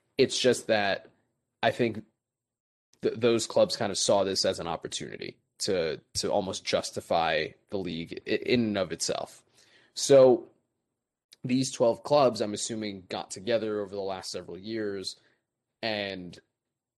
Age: 20-39